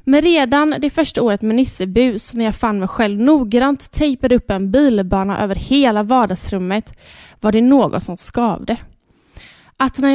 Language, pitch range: Swedish, 215-275 Hz